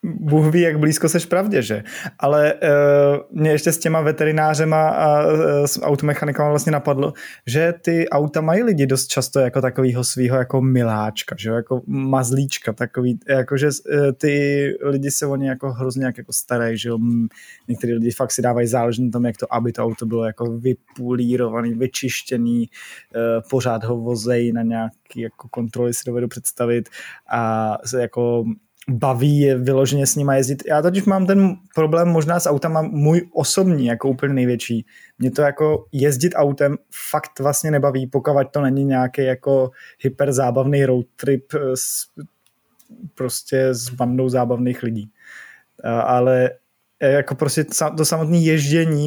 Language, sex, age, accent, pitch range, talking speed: Czech, male, 20-39, native, 125-150 Hz, 150 wpm